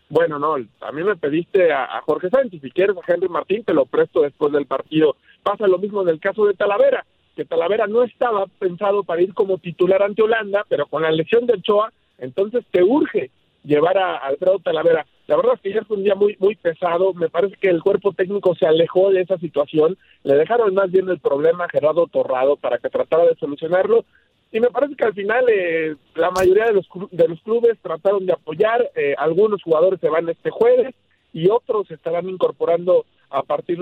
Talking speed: 215 wpm